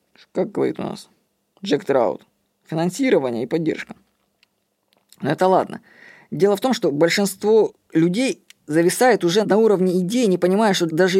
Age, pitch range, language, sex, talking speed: 20-39, 165-205 Hz, Russian, female, 145 wpm